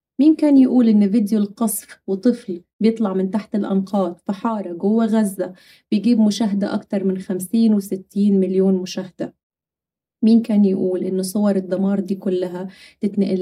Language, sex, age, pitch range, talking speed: Arabic, female, 30-49, 185-215 Hz, 140 wpm